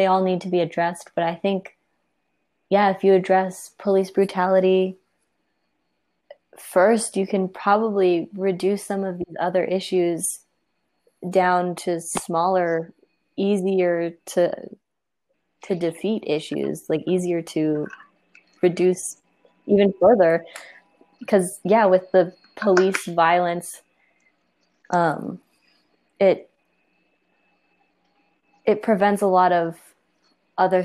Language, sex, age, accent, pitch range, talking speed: English, female, 20-39, American, 170-195 Hz, 105 wpm